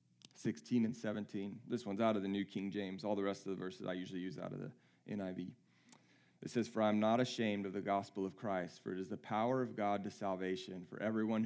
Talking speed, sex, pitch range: 240 wpm, male, 95-125 Hz